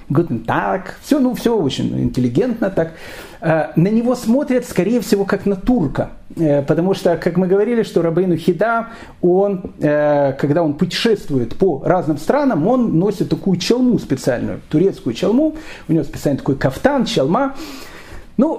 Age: 40-59